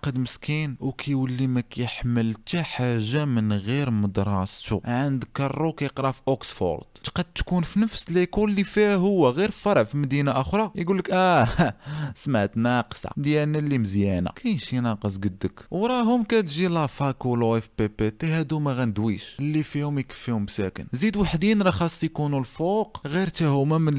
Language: Arabic